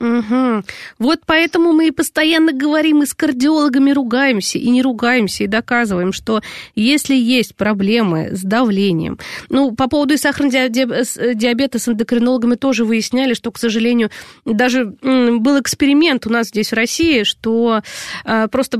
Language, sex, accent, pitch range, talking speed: Russian, female, native, 210-275 Hz, 140 wpm